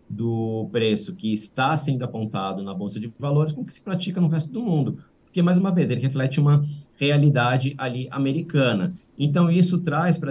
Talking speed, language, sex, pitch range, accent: 185 wpm, Portuguese, male, 115-150 Hz, Brazilian